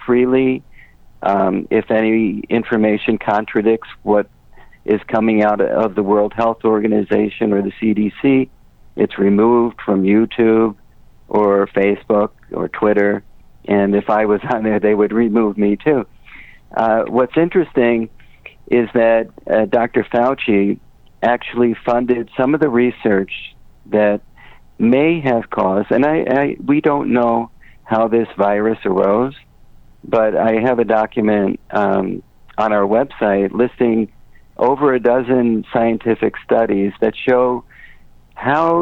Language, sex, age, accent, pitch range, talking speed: English, male, 50-69, American, 105-120 Hz, 130 wpm